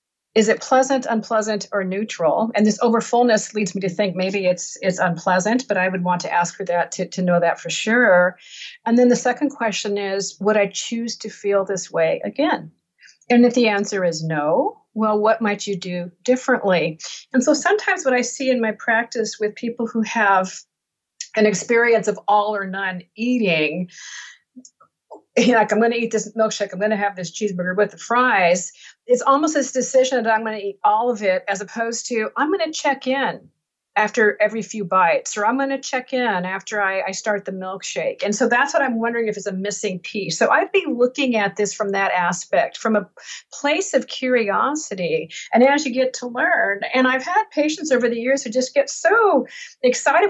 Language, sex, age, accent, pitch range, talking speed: English, female, 50-69, American, 200-260 Hz, 205 wpm